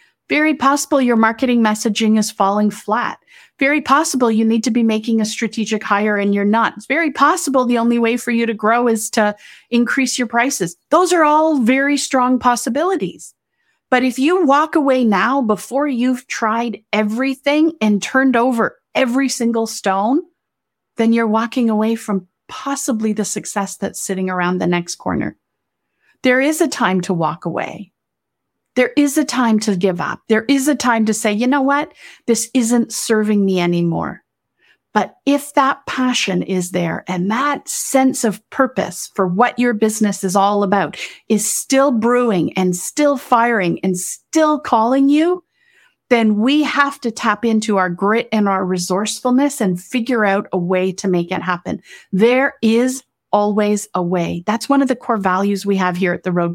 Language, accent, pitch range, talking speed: English, American, 205-270 Hz, 175 wpm